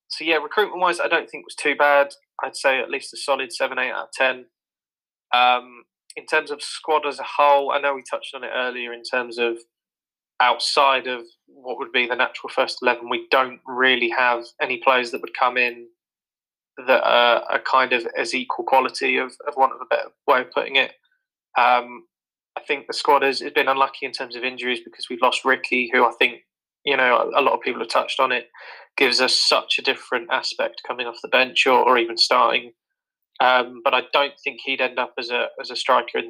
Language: English